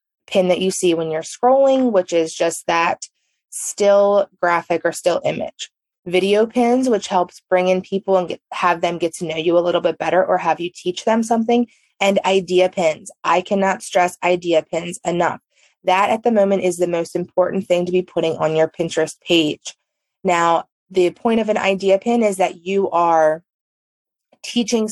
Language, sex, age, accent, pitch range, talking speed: English, female, 20-39, American, 175-220 Hz, 185 wpm